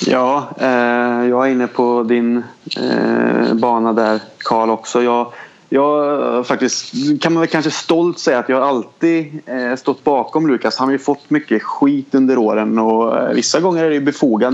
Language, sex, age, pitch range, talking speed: Swedish, male, 30-49, 110-130 Hz, 185 wpm